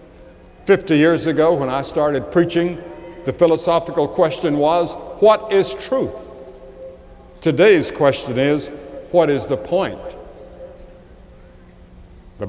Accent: American